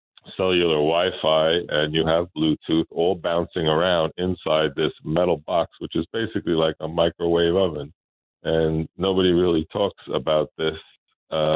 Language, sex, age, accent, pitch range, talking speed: English, male, 50-69, American, 80-85 Hz, 140 wpm